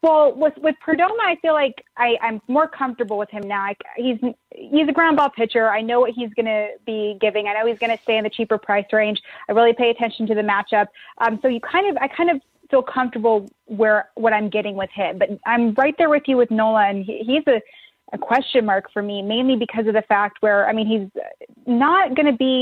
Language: English